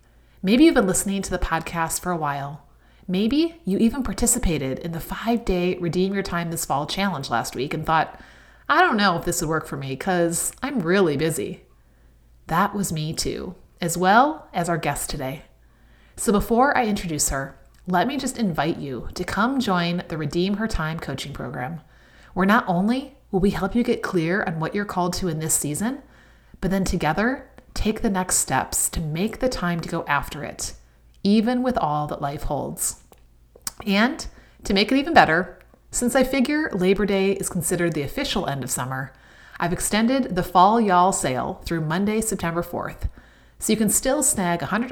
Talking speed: 190 wpm